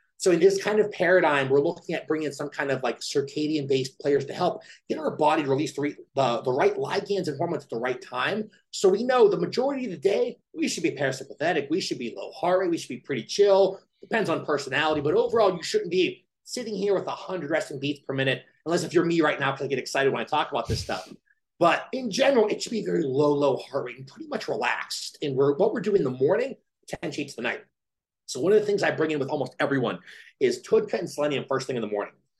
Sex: male